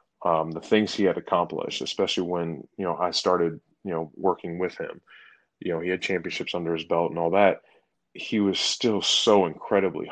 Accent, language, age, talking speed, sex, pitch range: American, English, 30-49, 195 wpm, male, 85-100 Hz